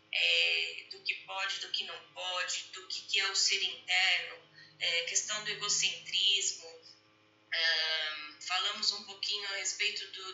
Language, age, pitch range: Portuguese, 20-39, 165-215 Hz